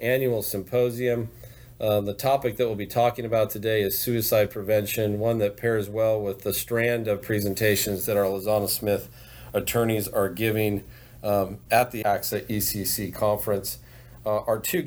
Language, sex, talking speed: English, male, 155 wpm